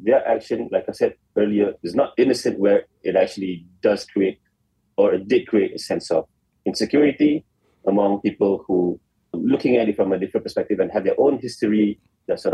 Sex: male